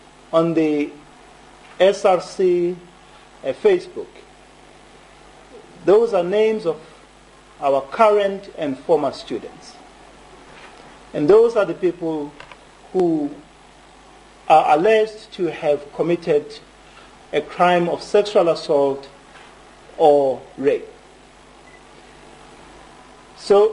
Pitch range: 175-245 Hz